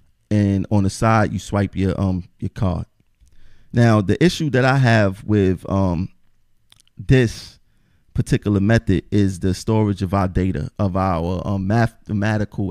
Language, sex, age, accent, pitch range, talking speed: English, male, 30-49, American, 100-115 Hz, 145 wpm